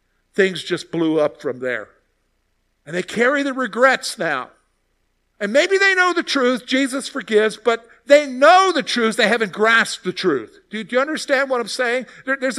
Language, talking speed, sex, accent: English, 180 wpm, male, American